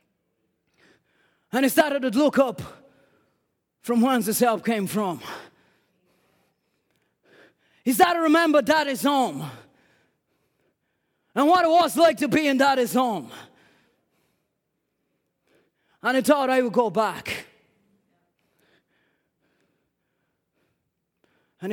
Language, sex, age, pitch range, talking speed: English, male, 20-39, 225-330 Hz, 100 wpm